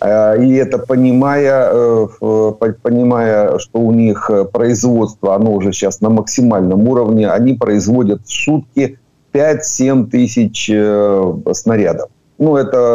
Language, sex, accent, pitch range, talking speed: Ukrainian, male, native, 110-130 Hz, 105 wpm